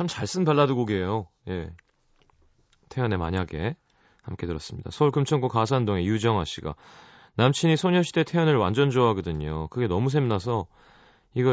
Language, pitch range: Korean, 95-140 Hz